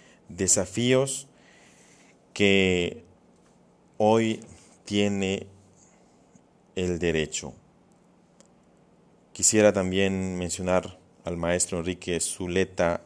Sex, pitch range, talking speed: male, 85-100 Hz, 60 wpm